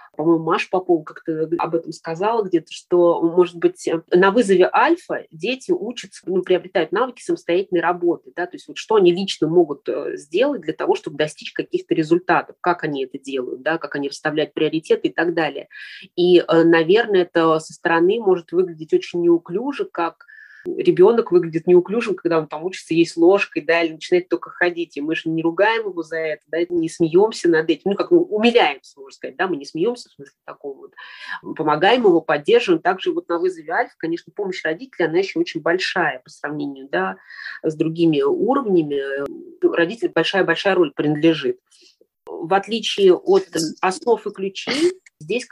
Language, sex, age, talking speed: Russian, female, 20-39, 170 wpm